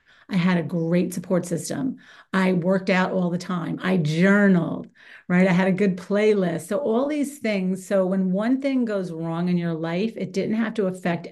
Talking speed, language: 200 wpm, English